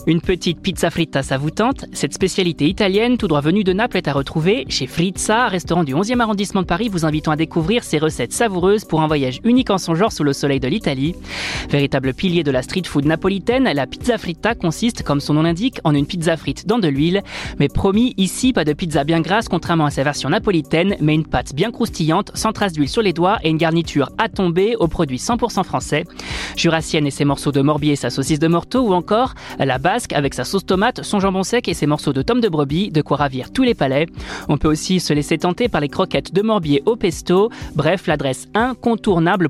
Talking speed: 225 wpm